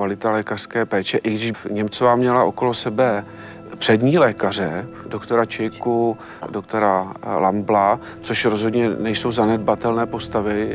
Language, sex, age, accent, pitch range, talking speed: Czech, male, 40-59, native, 110-130 Hz, 110 wpm